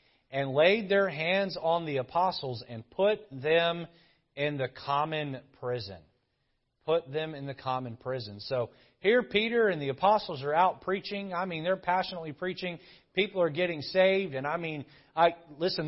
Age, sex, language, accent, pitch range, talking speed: 30-49, male, English, American, 145-190 Hz, 165 wpm